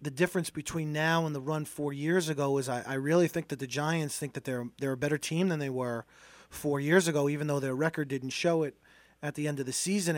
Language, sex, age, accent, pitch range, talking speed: English, male, 30-49, American, 145-185 Hz, 260 wpm